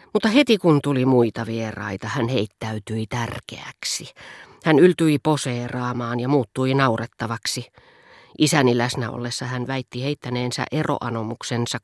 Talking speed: 110 wpm